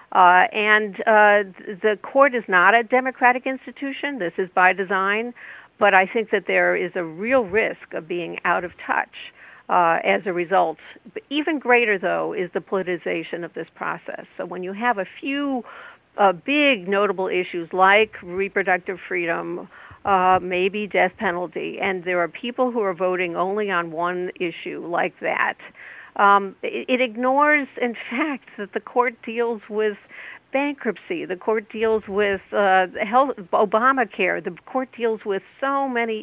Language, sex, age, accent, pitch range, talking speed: English, female, 50-69, American, 185-240 Hz, 160 wpm